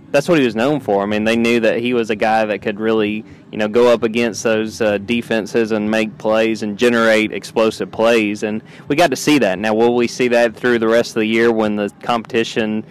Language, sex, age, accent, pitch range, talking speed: English, male, 20-39, American, 110-135 Hz, 245 wpm